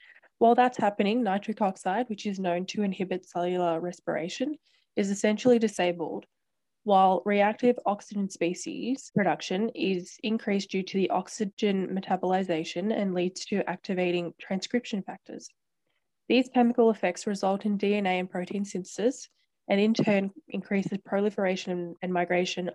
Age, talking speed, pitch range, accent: 10-29, 130 wpm, 180-215 Hz, Australian